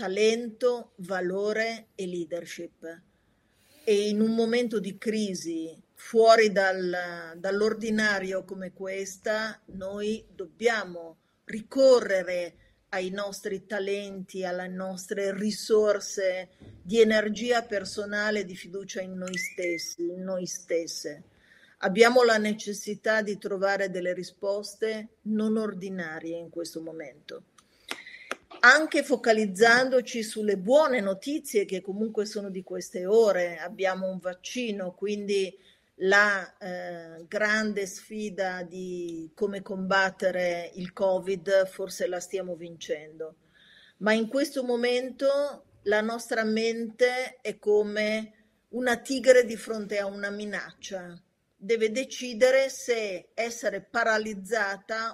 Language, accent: Italian, native